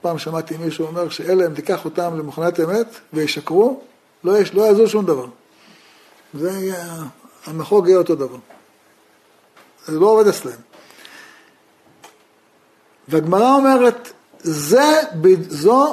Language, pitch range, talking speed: Hebrew, 160-245 Hz, 105 wpm